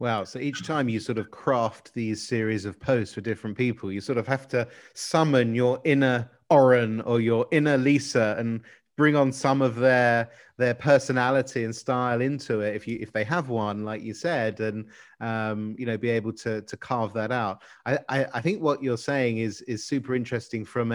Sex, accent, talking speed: male, British, 205 wpm